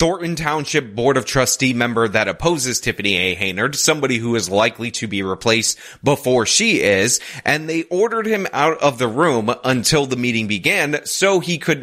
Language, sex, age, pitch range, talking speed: English, male, 20-39, 110-160 Hz, 185 wpm